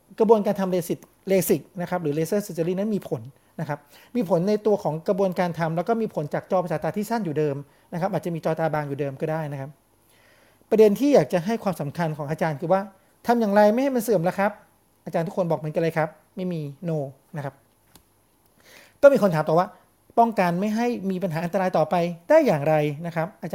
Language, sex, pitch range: Thai, male, 155-210 Hz